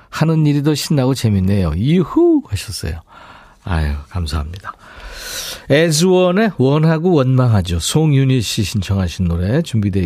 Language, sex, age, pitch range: Korean, male, 50-69, 100-160 Hz